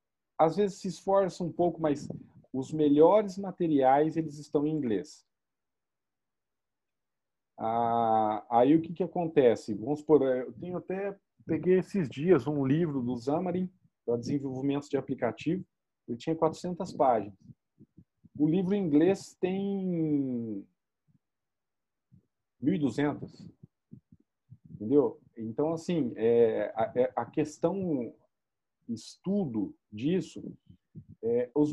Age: 40-59